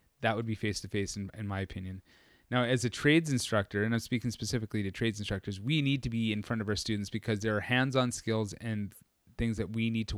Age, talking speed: 30-49, 235 wpm